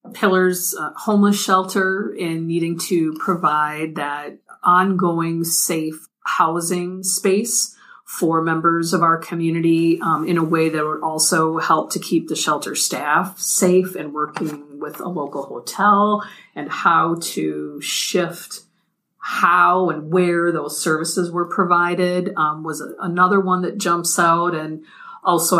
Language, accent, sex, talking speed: English, American, female, 135 wpm